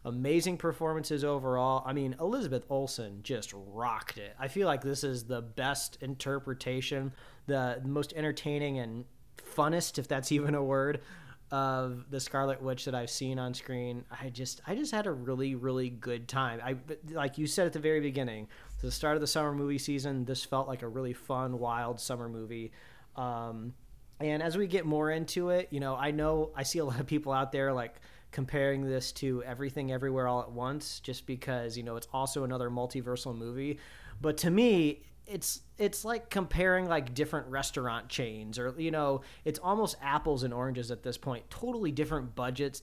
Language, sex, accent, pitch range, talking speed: English, male, American, 125-150 Hz, 190 wpm